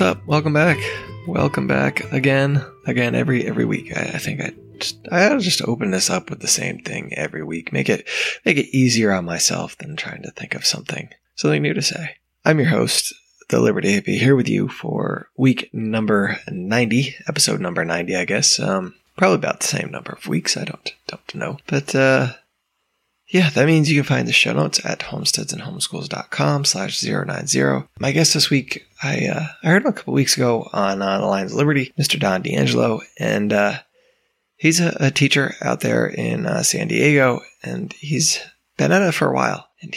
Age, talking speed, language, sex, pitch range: 20-39, 195 wpm, English, male, 95-145 Hz